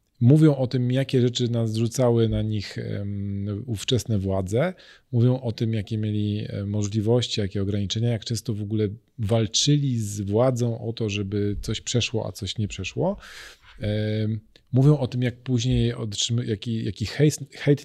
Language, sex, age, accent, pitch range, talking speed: Polish, male, 40-59, native, 105-120 Hz, 140 wpm